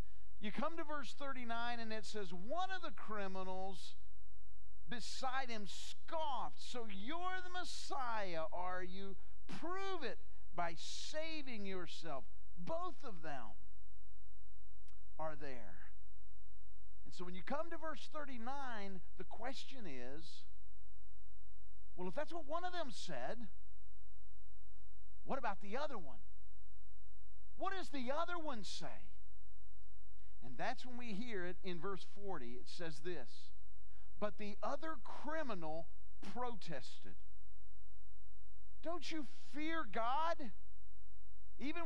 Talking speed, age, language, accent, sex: 120 wpm, 50-69, English, American, male